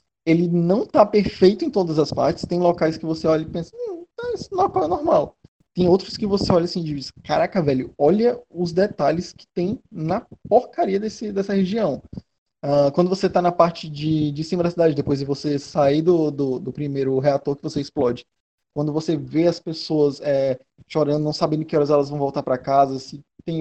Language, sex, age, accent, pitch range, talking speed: Portuguese, male, 20-39, Brazilian, 145-190 Hz, 205 wpm